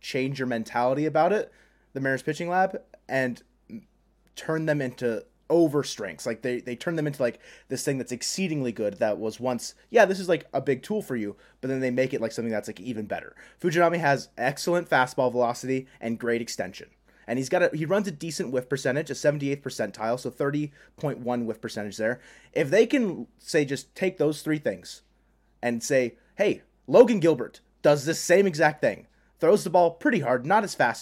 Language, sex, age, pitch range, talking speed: English, male, 30-49, 120-160 Hz, 200 wpm